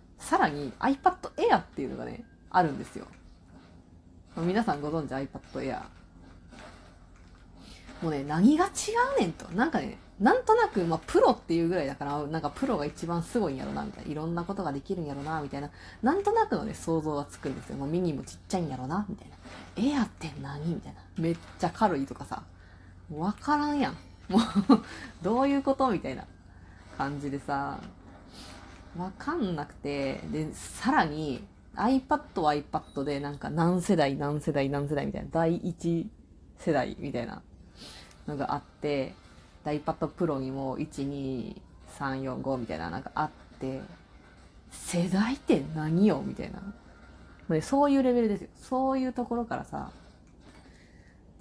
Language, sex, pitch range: Japanese, female, 130-200 Hz